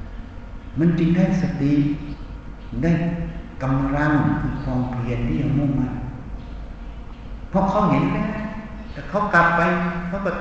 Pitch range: 125-185 Hz